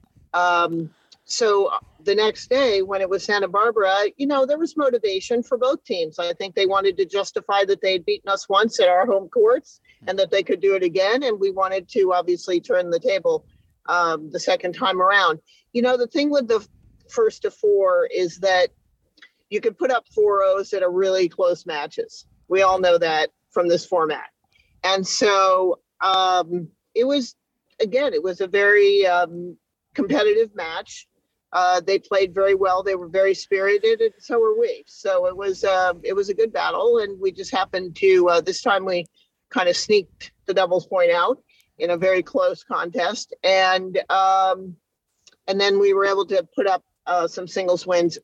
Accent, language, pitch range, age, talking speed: American, English, 185-290 Hz, 50-69, 190 wpm